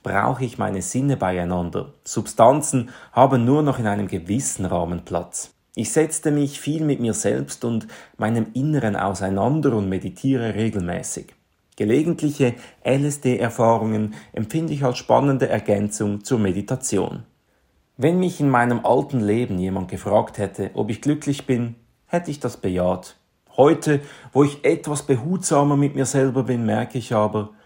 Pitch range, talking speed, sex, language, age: 105-135 Hz, 145 wpm, male, German, 40-59